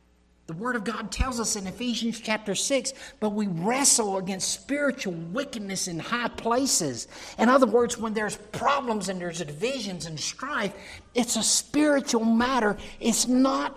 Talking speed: 155 wpm